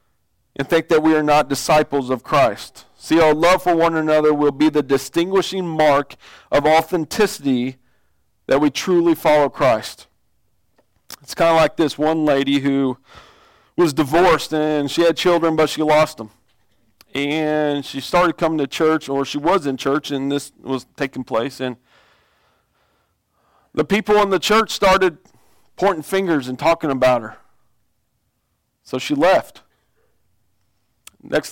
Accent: American